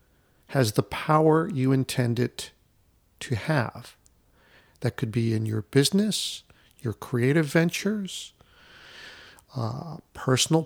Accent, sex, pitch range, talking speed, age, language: American, male, 120-145 Hz, 105 wpm, 50-69, English